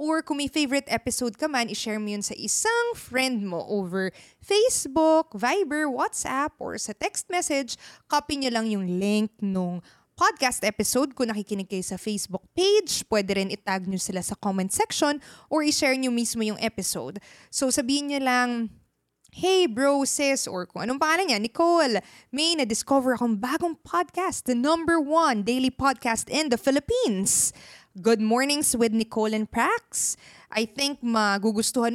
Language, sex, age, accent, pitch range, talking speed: Filipino, female, 20-39, native, 220-300 Hz, 160 wpm